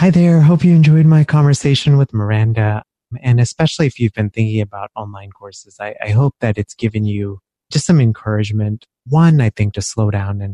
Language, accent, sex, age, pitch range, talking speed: English, American, male, 30-49, 100-115 Hz, 200 wpm